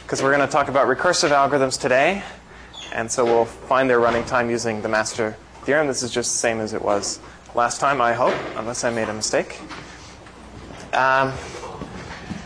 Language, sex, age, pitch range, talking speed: English, male, 20-39, 120-155 Hz, 185 wpm